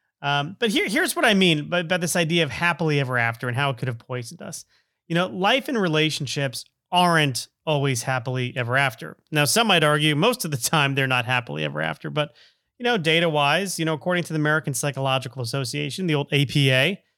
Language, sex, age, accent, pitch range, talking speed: English, male, 30-49, American, 135-175 Hz, 215 wpm